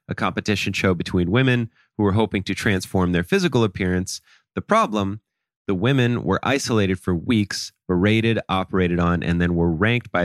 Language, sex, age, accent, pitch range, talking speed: English, male, 30-49, American, 90-120 Hz, 170 wpm